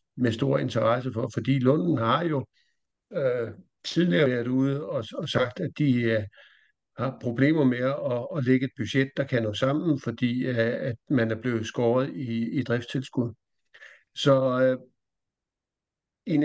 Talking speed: 155 wpm